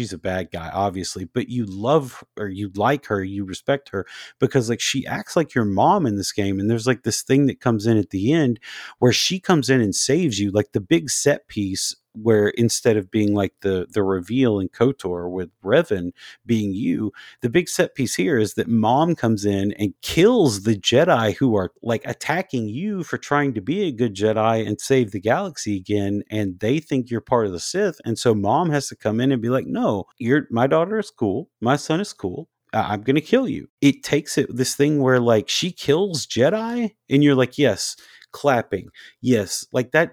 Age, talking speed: 40-59, 215 wpm